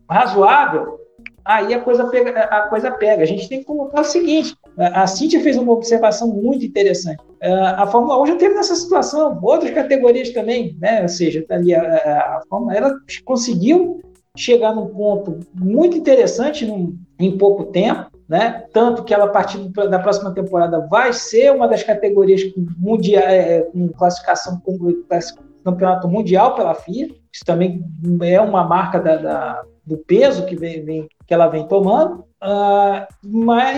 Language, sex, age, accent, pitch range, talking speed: Portuguese, male, 50-69, Brazilian, 180-250 Hz, 155 wpm